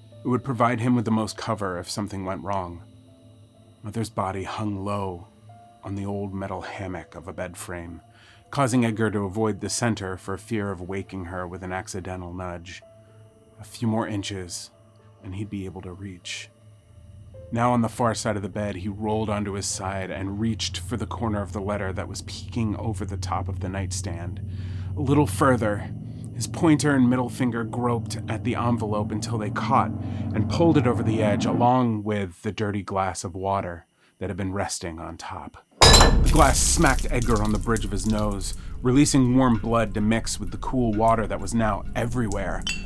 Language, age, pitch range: English, 30-49, 95-115 Hz